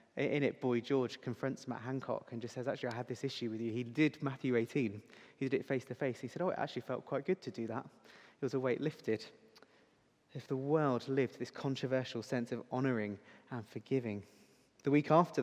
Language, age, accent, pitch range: English, 20-39, British, 115-135 Hz